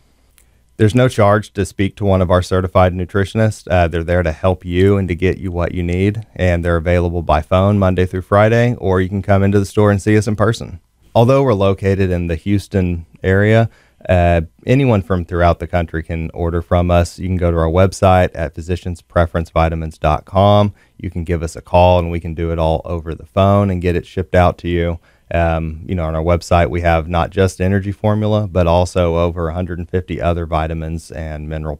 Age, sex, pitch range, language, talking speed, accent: 30-49, male, 85-100 Hz, English, 210 wpm, American